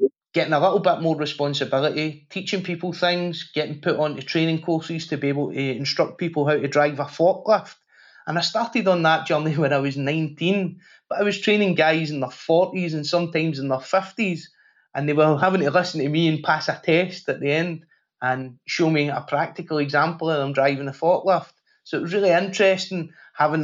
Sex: male